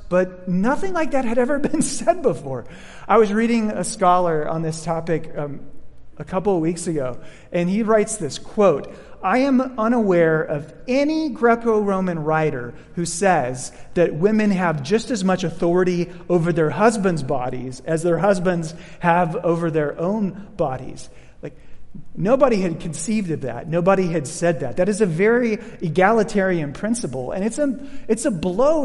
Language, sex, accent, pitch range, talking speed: English, male, American, 160-215 Hz, 160 wpm